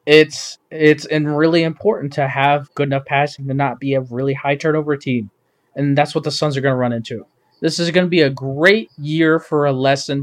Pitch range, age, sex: 140-180 Hz, 20-39, male